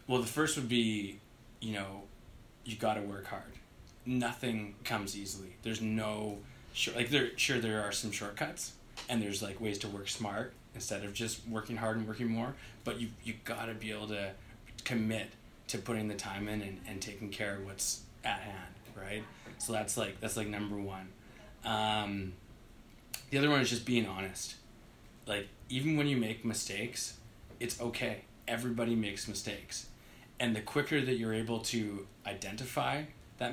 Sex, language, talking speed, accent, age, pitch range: male, English, 175 wpm, American, 20-39, 105-120 Hz